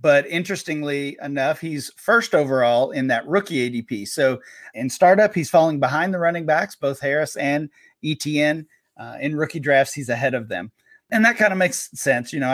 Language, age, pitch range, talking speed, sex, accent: English, 30-49, 130-155 Hz, 185 wpm, male, American